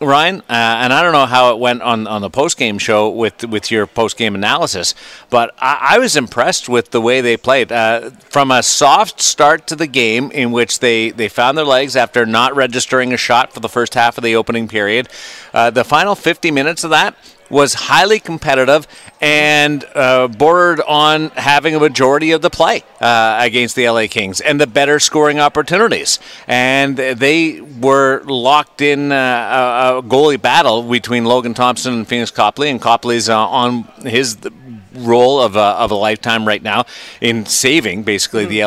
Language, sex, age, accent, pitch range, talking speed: English, male, 40-59, American, 115-140 Hz, 185 wpm